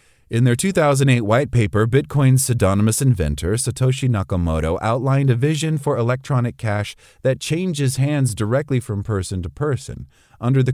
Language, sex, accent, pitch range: English, male, American, 100-130 Hz